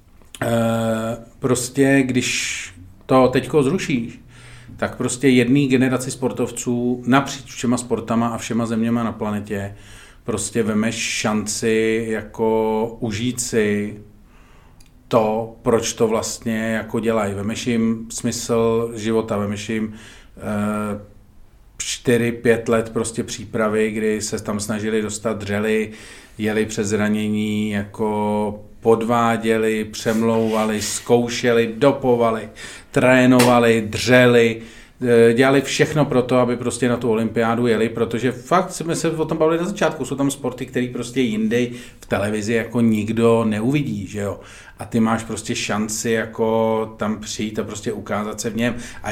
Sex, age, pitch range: male, 40-59, 110-120 Hz